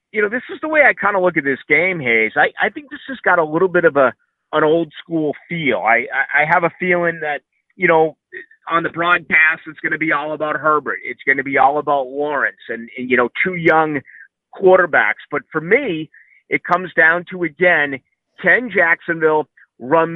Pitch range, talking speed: 145-180 Hz, 215 wpm